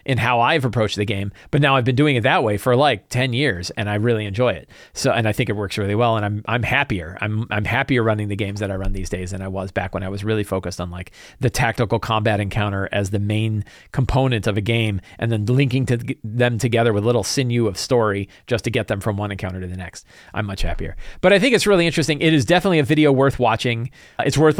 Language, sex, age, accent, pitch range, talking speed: English, male, 40-59, American, 110-150 Hz, 265 wpm